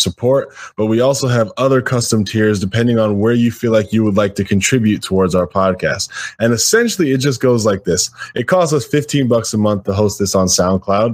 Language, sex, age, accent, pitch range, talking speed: English, male, 10-29, American, 105-135 Hz, 220 wpm